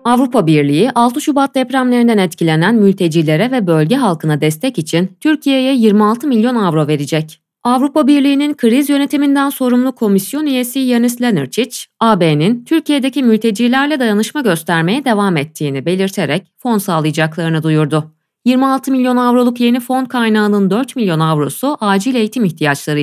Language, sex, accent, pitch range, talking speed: Turkish, female, native, 165-260 Hz, 130 wpm